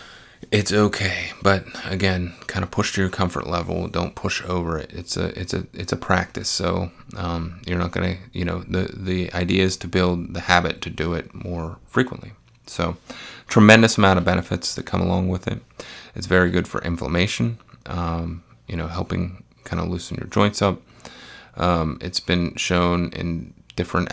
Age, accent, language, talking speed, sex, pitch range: 30-49, American, English, 180 wpm, male, 85-95 Hz